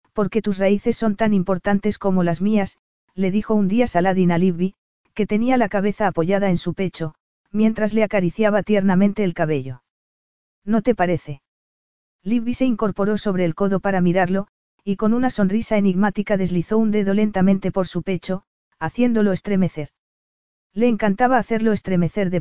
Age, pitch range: 40-59, 180-215 Hz